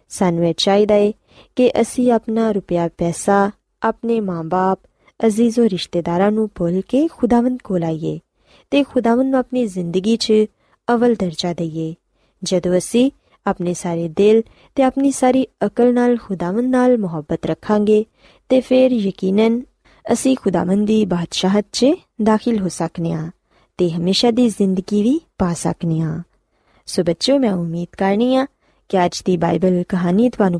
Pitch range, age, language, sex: 175-235 Hz, 20-39, Punjabi, female